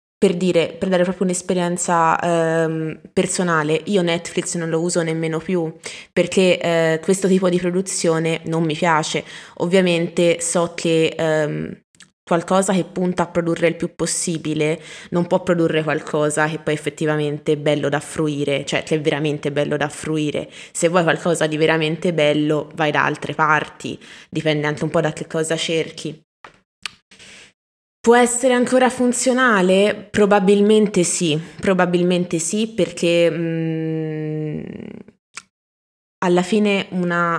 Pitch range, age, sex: 160-180 Hz, 20-39, female